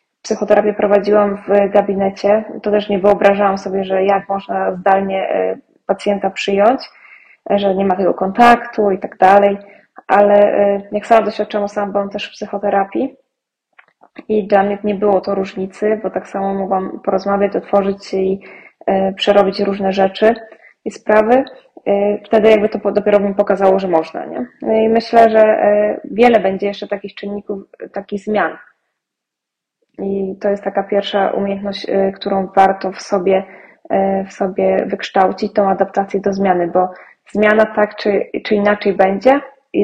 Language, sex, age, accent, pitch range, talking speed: Polish, female, 20-39, native, 195-215 Hz, 145 wpm